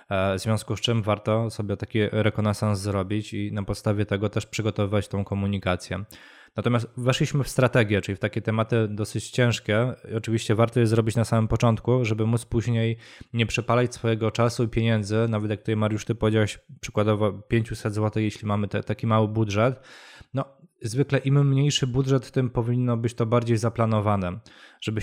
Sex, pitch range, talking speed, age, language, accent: male, 105-120 Hz, 165 wpm, 20-39, Polish, native